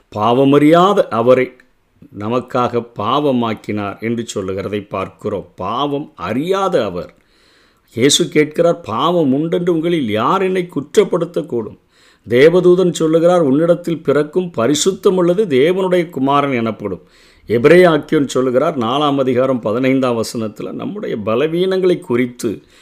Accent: native